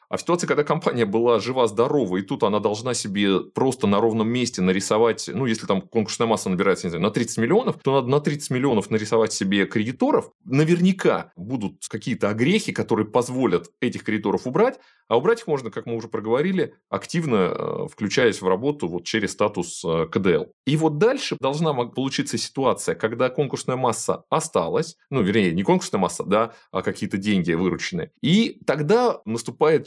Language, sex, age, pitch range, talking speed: Russian, male, 20-39, 110-175 Hz, 170 wpm